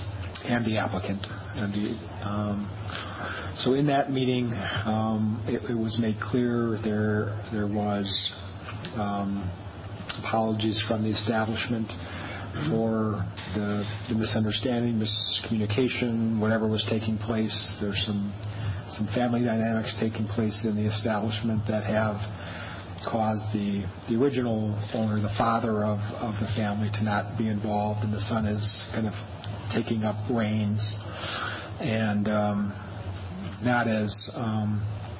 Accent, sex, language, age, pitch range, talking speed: American, male, English, 40-59, 105-110 Hz, 125 wpm